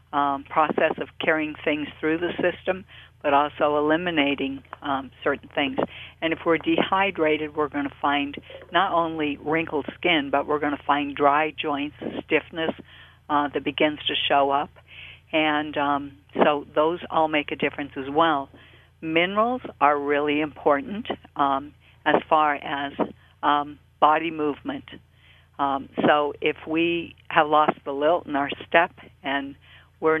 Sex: female